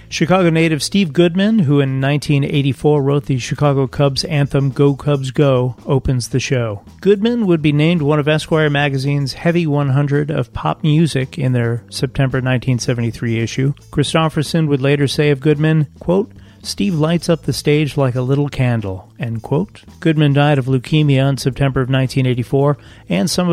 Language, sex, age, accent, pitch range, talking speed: English, male, 40-59, American, 130-155 Hz, 165 wpm